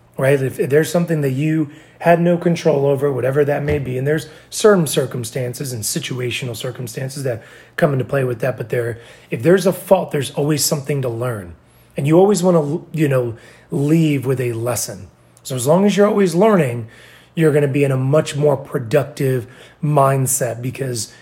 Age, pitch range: 30-49, 125-155 Hz